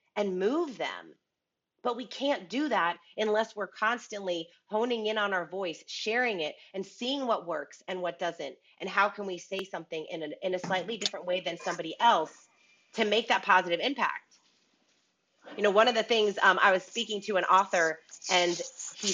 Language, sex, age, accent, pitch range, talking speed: English, female, 30-49, American, 190-260 Hz, 190 wpm